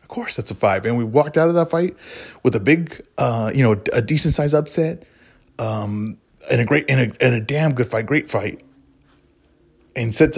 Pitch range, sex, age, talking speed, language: 105-135 Hz, male, 20-39, 210 wpm, English